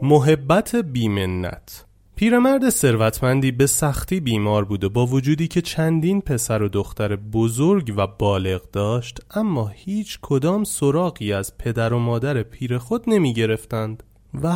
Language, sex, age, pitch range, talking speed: Persian, male, 30-49, 110-165 Hz, 130 wpm